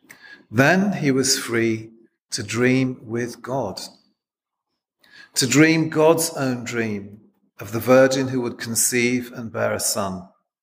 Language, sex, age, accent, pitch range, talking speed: English, male, 40-59, British, 110-135 Hz, 130 wpm